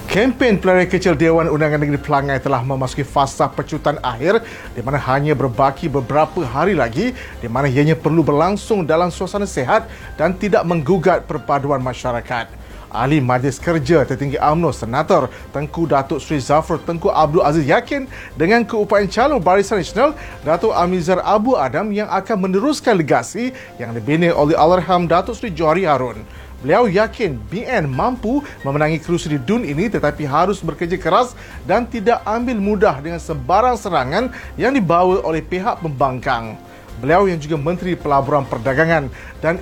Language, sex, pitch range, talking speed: Malay, male, 145-200 Hz, 150 wpm